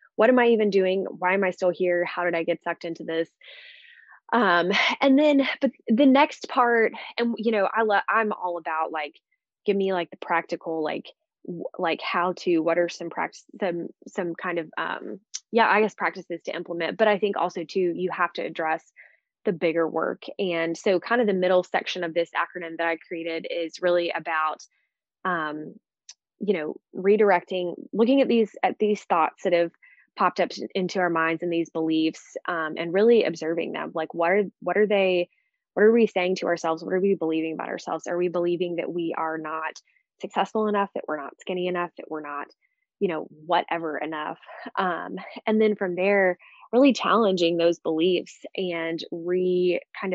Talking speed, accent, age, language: 195 wpm, American, 20-39, English